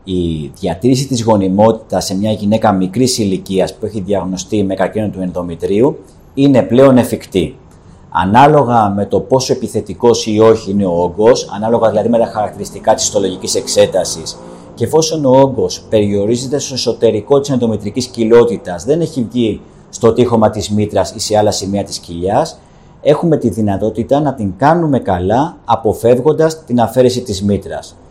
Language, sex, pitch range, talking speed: Greek, male, 100-125 Hz, 155 wpm